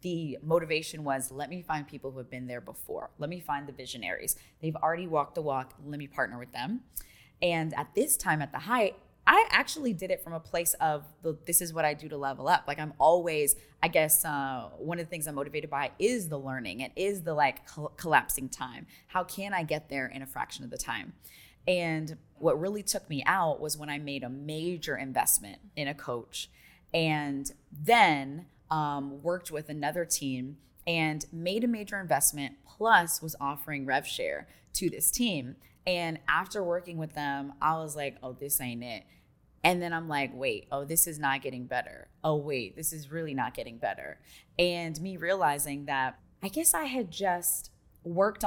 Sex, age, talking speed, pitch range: female, 20-39, 200 wpm, 140-175 Hz